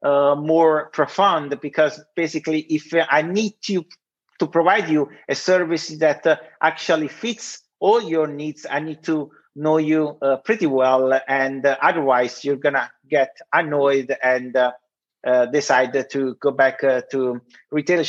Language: Italian